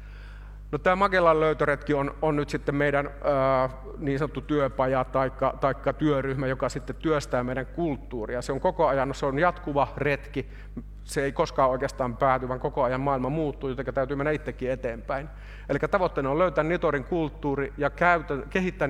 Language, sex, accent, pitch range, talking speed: Finnish, male, native, 130-150 Hz, 170 wpm